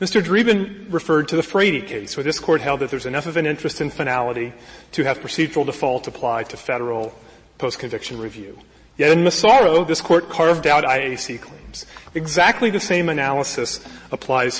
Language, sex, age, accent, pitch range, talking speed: English, male, 30-49, American, 140-185 Hz, 175 wpm